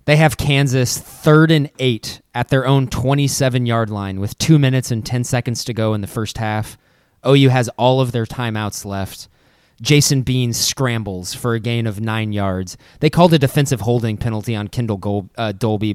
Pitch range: 115-135 Hz